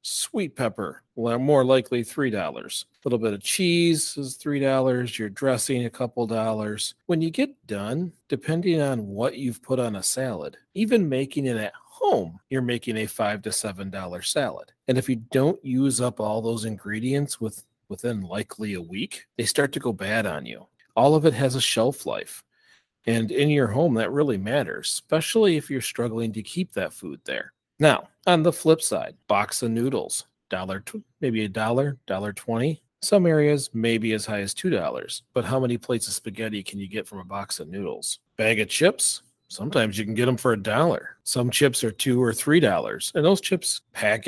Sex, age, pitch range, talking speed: male, 40-59, 110-140 Hz, 200 wpm